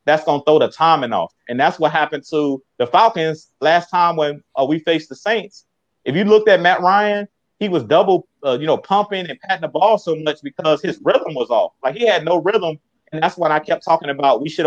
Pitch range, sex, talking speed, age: 145-180 Hz, male, 245 wpm, 30-49